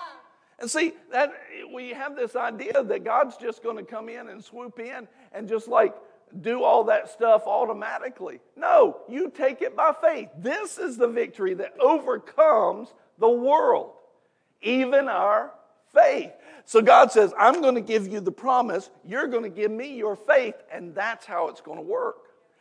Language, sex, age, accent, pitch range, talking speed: English, male, 50-69, American, 240-315 Hz, 175 wpm